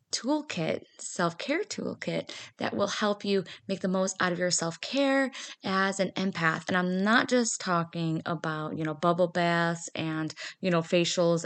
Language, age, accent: English, 20-39, American